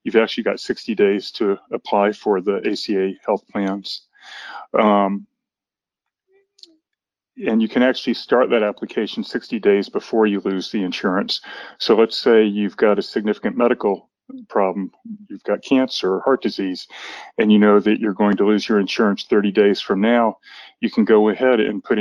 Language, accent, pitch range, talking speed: English, American, 100-130 Hz, 170 wpm